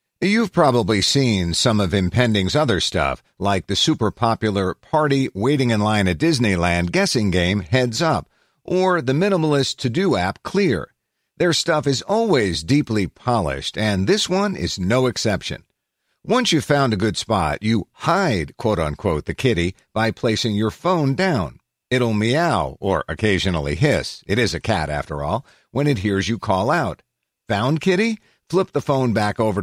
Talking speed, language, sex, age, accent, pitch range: 165 wpm, English, male, 50-69, American, 100-155 Hz